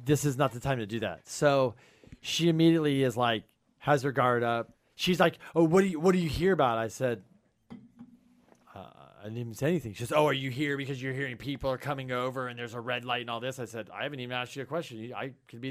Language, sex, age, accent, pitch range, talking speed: English, male, 30-49, American, 110-145 Hz, 265 wpm